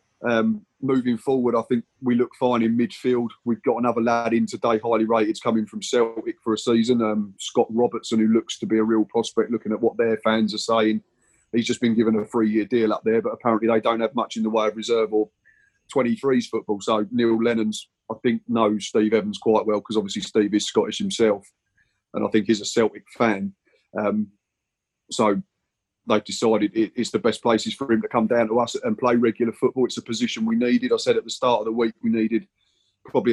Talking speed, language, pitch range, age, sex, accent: 220 wpm, English, 110-125 Hz, 30-49, male, British